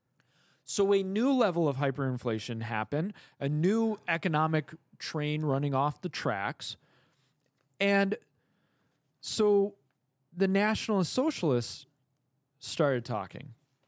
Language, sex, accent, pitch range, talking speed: English, male, American, 145-200 Hz, 95 wpm